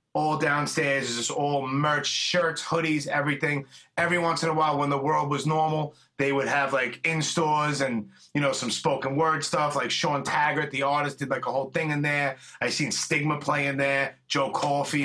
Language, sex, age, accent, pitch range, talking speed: English, male, 30-49, American, 140-160 Hz, 205 wpm